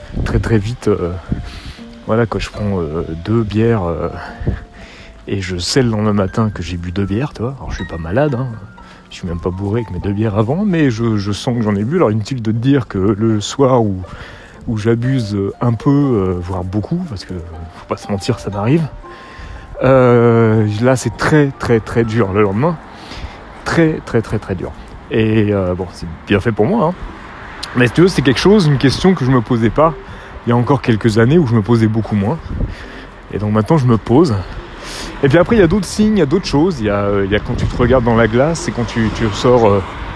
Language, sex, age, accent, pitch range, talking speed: French, male, 30-49, French, 100-130 Hz, 235 wpm